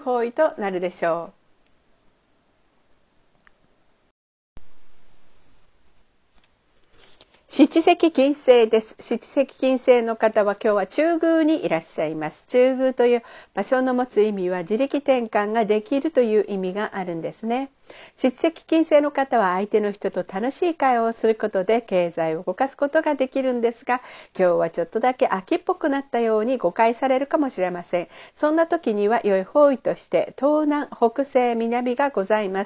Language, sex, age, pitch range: Japanese, female, 50-69, 205-275 Hz